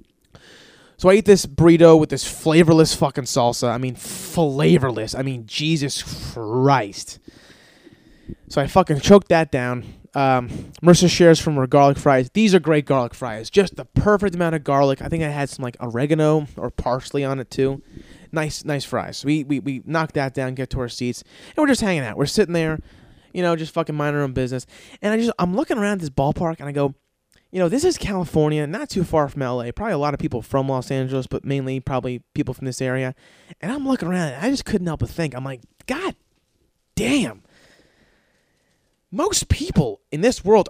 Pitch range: 130-175 Hz